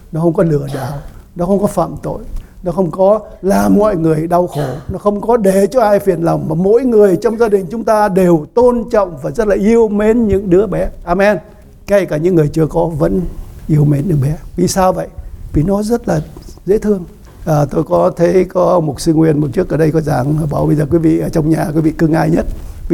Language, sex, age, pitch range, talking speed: English, male, 60-79, 150-185 Hz, 265 wpm